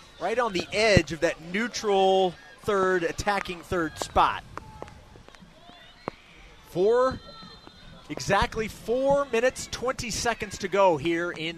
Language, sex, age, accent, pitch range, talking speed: English, male, 30-49, American, 175-215 Hz, 110 wpm